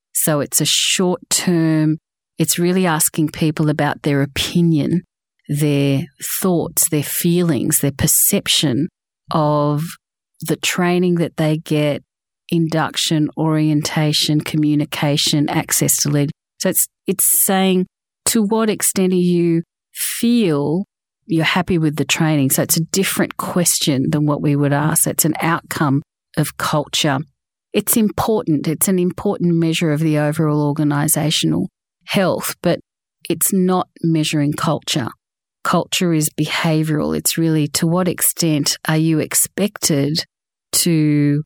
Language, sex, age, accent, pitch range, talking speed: English, female, 40-59, Australian, 150-175 Hz, 125 wpm